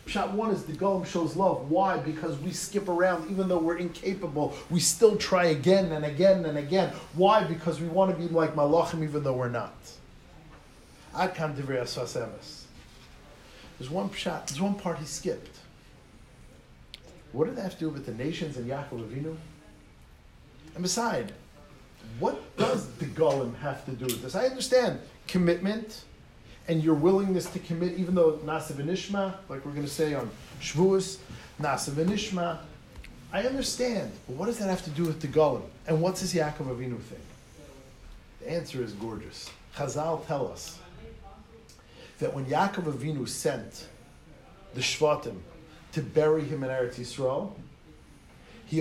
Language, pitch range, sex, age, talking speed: English, 140-180 Hz, male, 40-59, 155 wpm